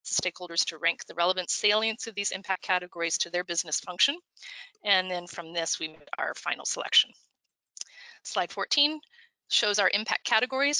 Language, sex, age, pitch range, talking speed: English, female, 30-49, 185-270 Hz, 160 wpm